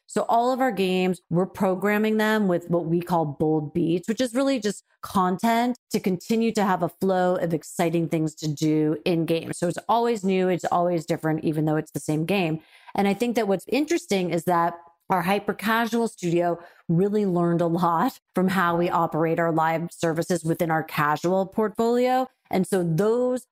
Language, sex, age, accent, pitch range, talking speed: English, female, 30-49, American, 165-205 Hz, 190 wpm